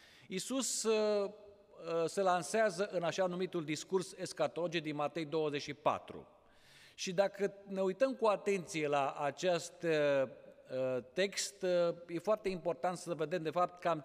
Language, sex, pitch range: Romanian, male, 155-200 Hz